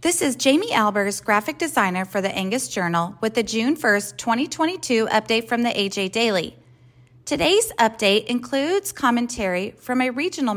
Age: 30-49